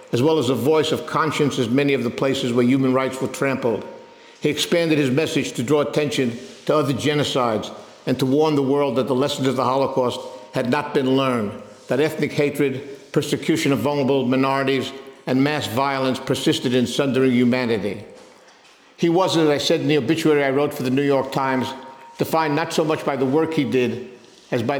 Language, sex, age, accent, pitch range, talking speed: English, male, 50-69, American, 130-150 Hz, 200 wpm